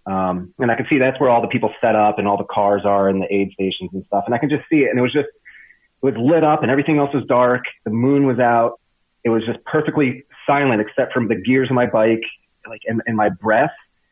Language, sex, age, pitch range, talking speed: English, male, 30-49, 110-140 Hz, 265 wpm